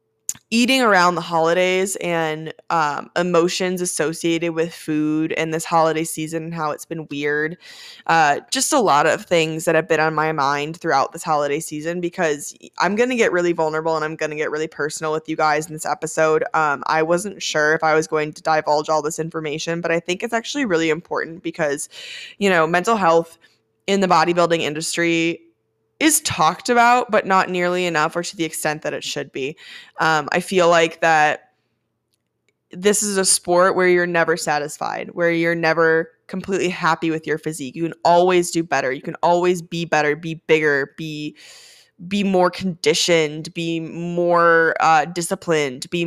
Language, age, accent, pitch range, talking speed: English, 20-39, American, 155-180 Hz, 185 wpm